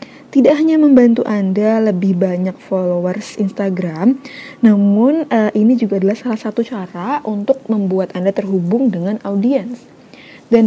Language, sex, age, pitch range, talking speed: Indonesian, female, 20-39, 190-255 Hz, 125 wpm